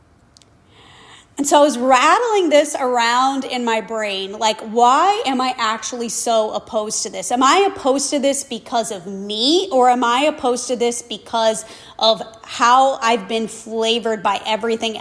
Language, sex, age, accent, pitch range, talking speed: English, female, 30-49, American, 220-280 Hz, 165 wpm